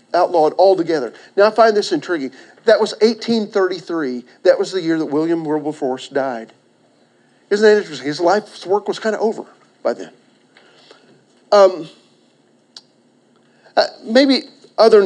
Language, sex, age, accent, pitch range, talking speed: English, male, 50-69, American, 160-225 Hz, 135 wpm